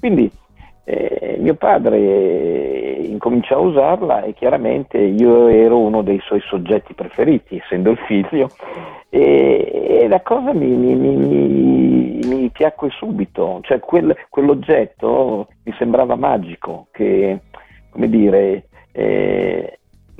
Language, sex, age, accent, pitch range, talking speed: Italian, male, 50-69, native, 100-140 Hz, 120 wpm